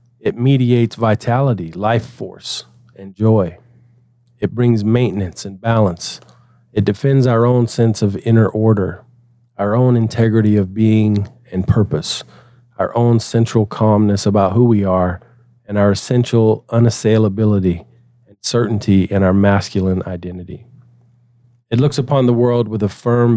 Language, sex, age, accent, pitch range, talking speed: English, male, 40-59, American, 100-120 Hz, 135 wpm